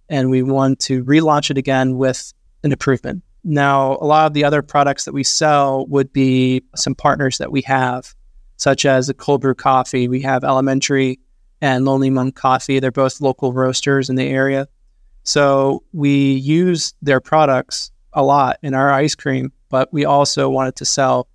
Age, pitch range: 20-39, 130-145 Hz